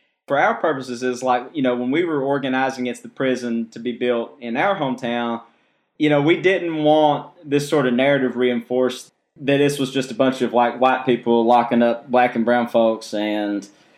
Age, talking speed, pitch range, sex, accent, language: 20-39, 200 wpm, 115-135 Hz, male, American, English